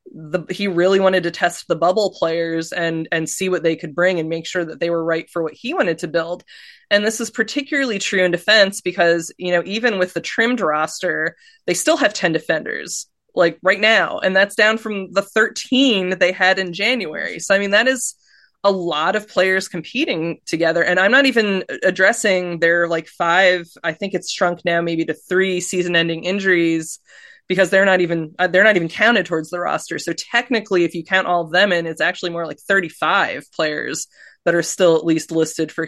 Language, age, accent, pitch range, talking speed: English, 20-39, American, 170-205 Hz, 215 wpm